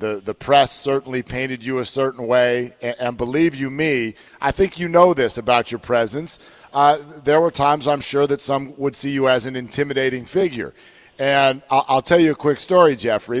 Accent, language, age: American, English, 40-59